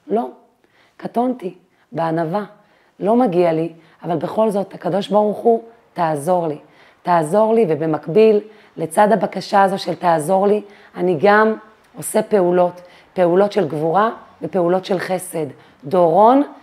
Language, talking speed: Hebrew, 125 wpm